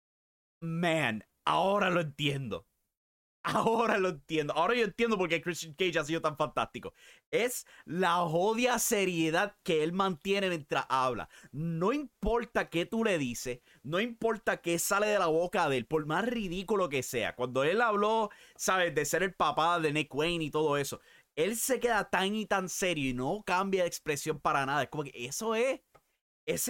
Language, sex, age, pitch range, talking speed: English, male, 30-49, 150-195 Hz, 180 wpm